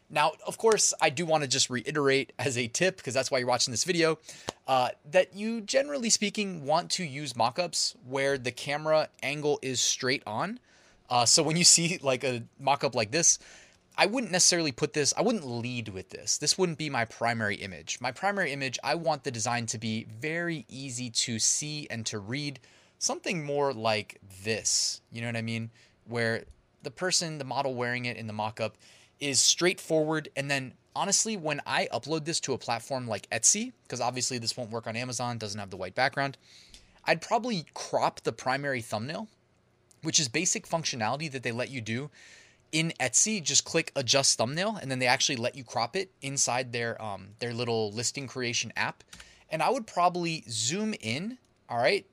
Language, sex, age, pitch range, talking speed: English, male, 20-39, 120-165 Hz, 190 wpm